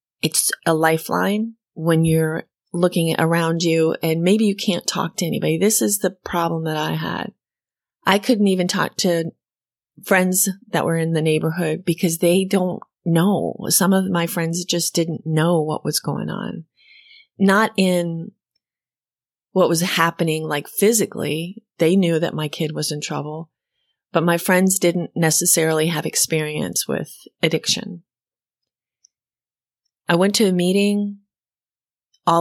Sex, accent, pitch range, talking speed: female, American, 160-195 Hz, 145 wpm